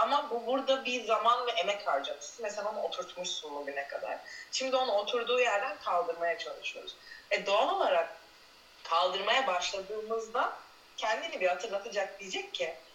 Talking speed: 130 wpm